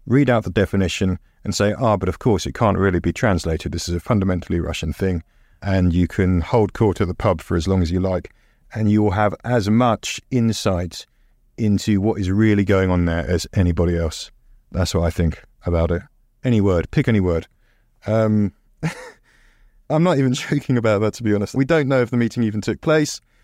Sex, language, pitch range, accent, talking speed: male, English, 85-110 Hz, British, 210 wpm